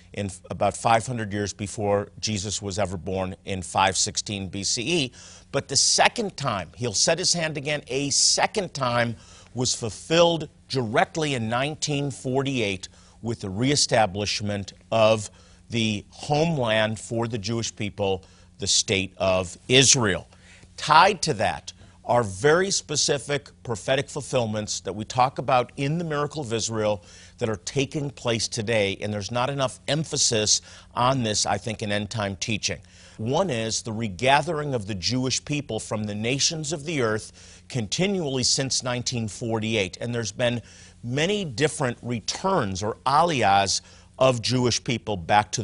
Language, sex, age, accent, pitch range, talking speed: English, male, 50-69, American, 100-135 Hz, 140 wpm